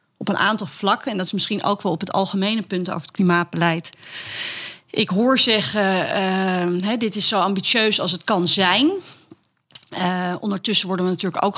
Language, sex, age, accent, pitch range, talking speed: Dutch, female, 30-49, Dutch, 175-205 Hz, 180 wpm